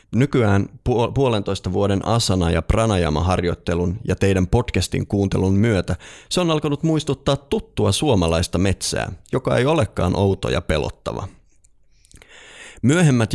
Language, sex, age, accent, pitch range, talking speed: Finnish, male, 30-49, native, 90-115 Hz, 110 wpm